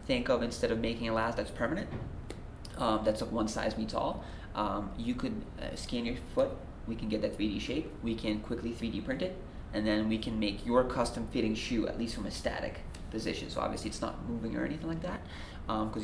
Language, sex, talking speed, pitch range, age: English, male, 225 wpm, 80-115 Hz, 20-39